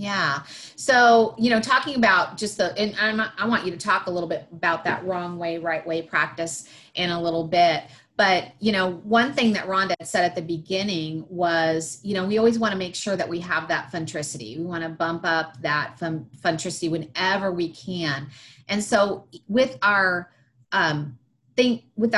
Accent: American